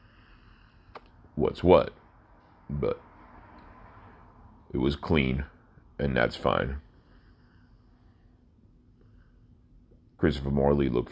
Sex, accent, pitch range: male, American, 75-110 Hz